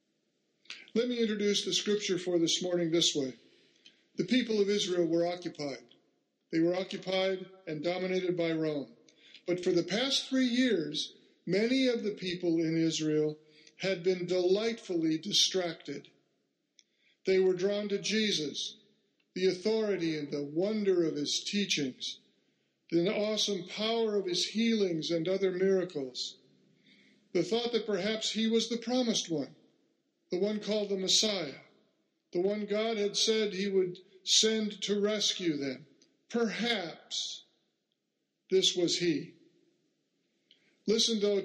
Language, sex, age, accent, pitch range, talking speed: English, male, 50-69, American, 165-210 Hz, 135 wpm